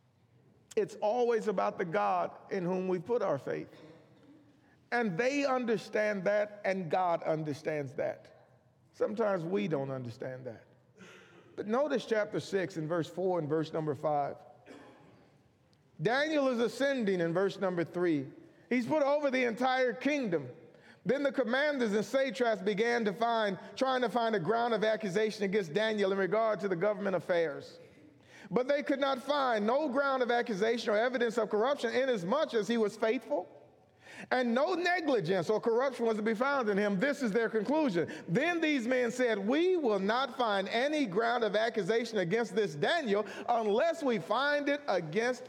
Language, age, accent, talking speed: English, 40-59, American, 165 wpm